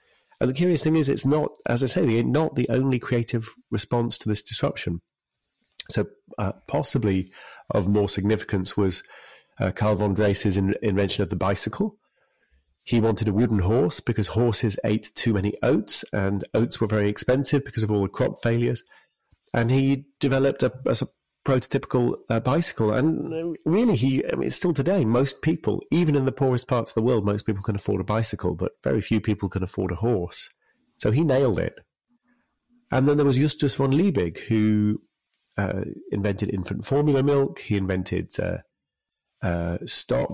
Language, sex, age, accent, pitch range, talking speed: English, male, 40-59, British, 100-135 Hz, 175 wpm